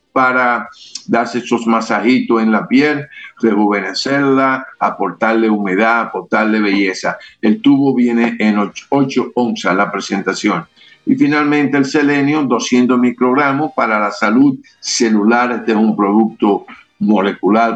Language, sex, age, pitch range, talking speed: Spanish, male, 60-79, 110-125 Hz, 120 wpm